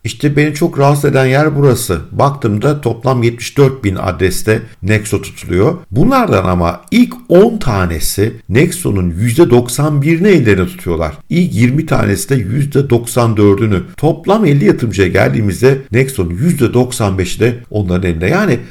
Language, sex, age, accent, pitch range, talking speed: Turkish, male, 50-69, native, 95-130 Hz, 120 wpm